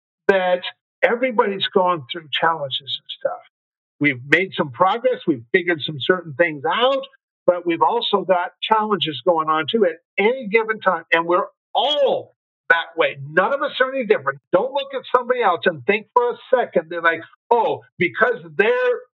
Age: 50-69